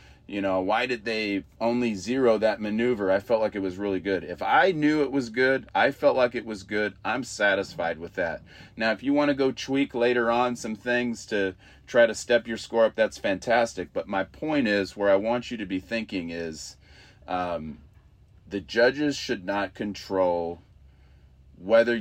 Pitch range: 90-115 Hz